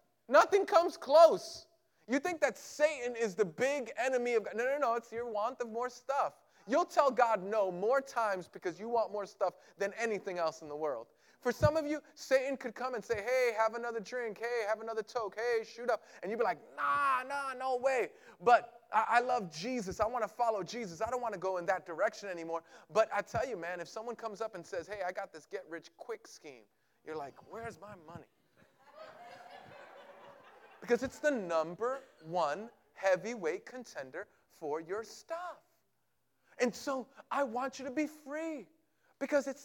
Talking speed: 195 wpm